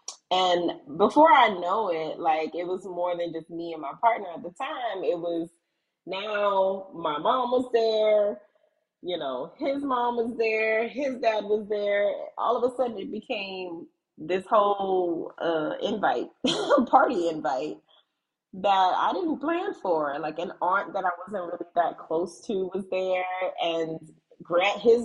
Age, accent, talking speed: 20-39, American, 160 wpm